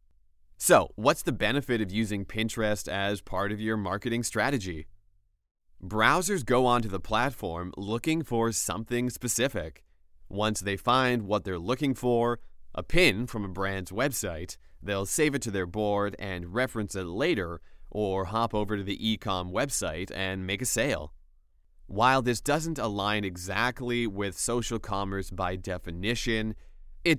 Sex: male